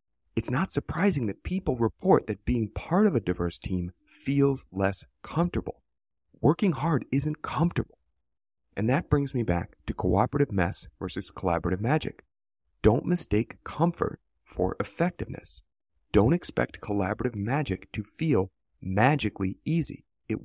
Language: English